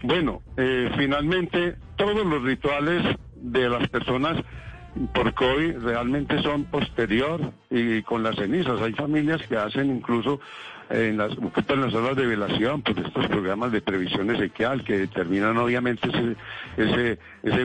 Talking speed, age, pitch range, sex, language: 145 wpm, 60-79, 115-145 Hz, male, Spanish